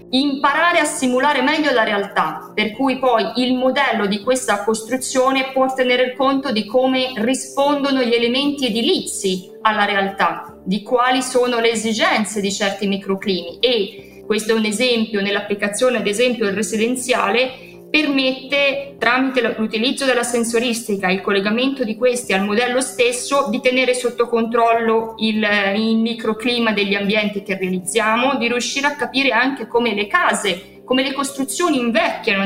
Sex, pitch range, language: female, 205-255 Hz, Italian